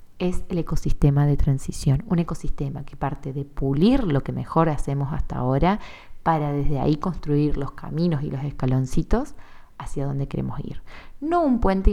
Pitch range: 145-180 Hz